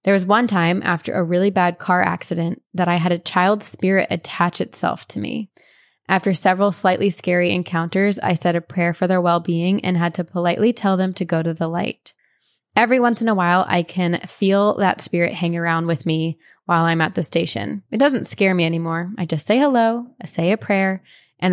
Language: English